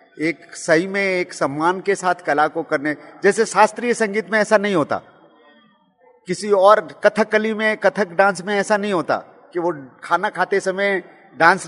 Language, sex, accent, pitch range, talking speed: Hindi, male, native, 155-195 Hz, 175 wpm